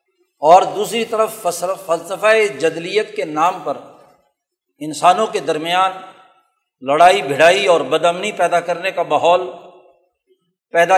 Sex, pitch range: male, 175-230 Hz